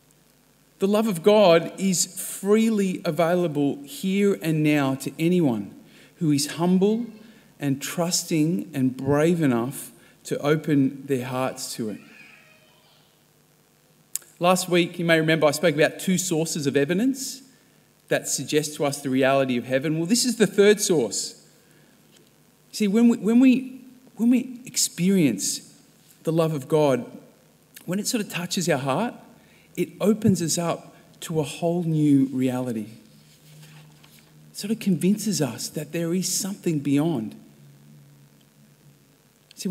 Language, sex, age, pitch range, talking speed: English, male, 40-59, 140-190 Hz, 135 wpm